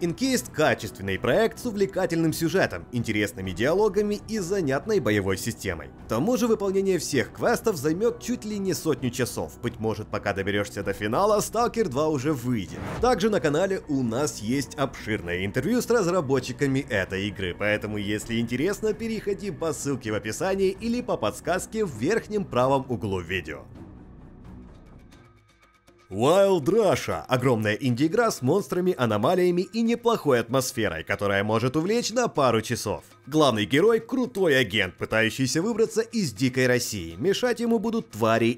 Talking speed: 140 wpm